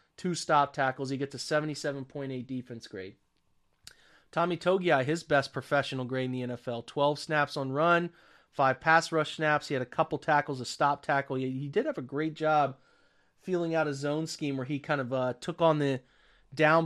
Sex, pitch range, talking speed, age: male, 130-150 Hz, 195 wpm, 30-49